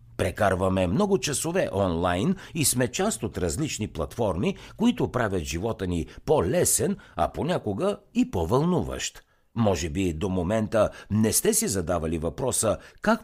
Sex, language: male, Bulgarian